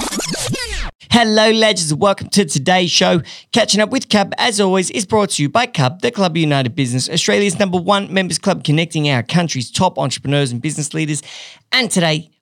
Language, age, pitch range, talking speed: English, 40-59, 140-180 Hz, 185 wpm